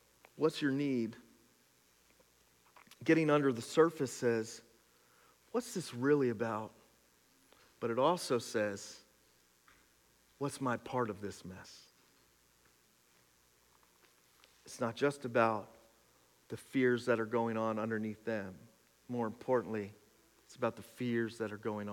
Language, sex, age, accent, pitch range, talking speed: English, male, 40-59, American, 105-120 Hz, 120 wpm